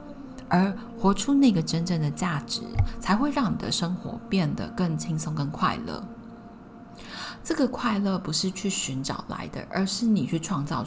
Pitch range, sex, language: 165-235 Hz, female, Chinese